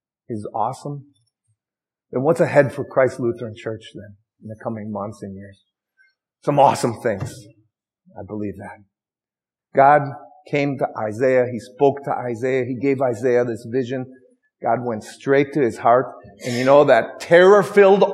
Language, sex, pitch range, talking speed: English, male, 115-145 Hz, 150 wpm